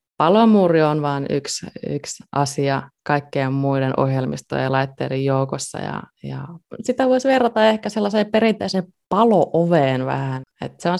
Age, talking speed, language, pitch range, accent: 20-39, 135 wpm, Finnish, 135-165 Hz, native